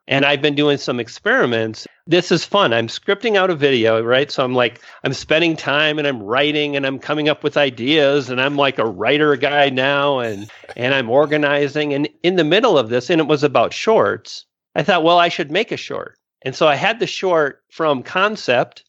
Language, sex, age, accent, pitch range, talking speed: English, male, 40-59, American, 130-160 Hz, 215 wpm